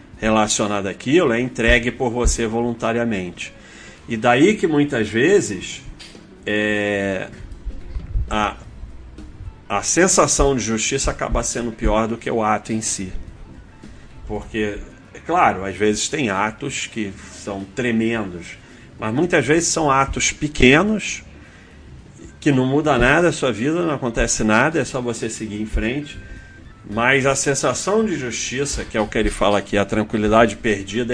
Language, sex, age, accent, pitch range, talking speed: Portuguese, male, 40-59, Brazilian, 100-125 Hz, 145 wpm